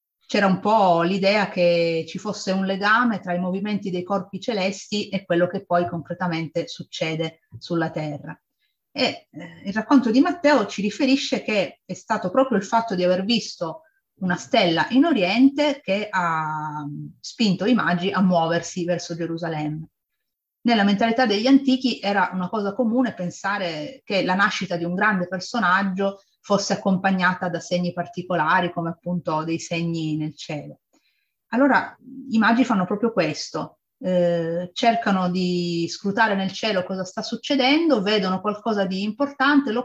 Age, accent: 30-49, native